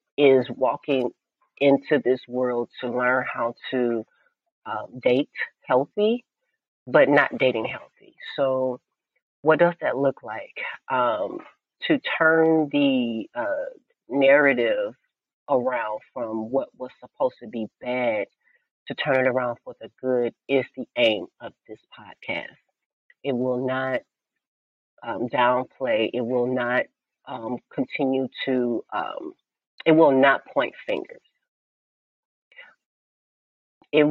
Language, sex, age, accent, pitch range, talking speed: English, female, 40-59, American, 120-155 Hz, 120 wpm